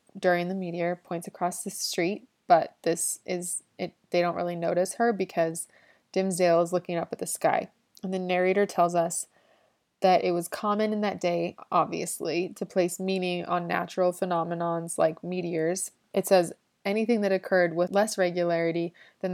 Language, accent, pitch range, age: English, American, 170-190 Hz, 20-39